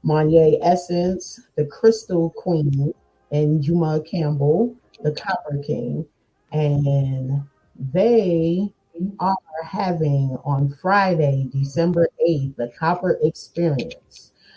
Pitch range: 150-180 Hz